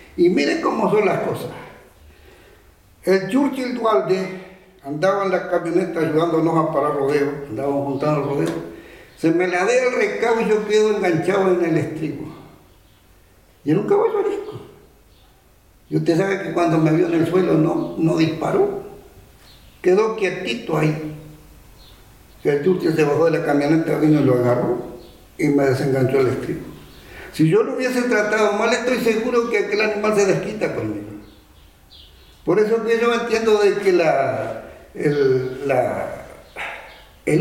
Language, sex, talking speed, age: Portuguese, male, 150 wpm, 60-79